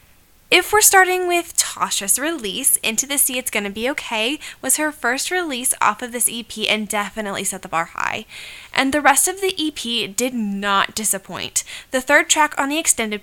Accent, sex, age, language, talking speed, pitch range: American, female, 10-29, English, 190 wpm, 215-285 Hz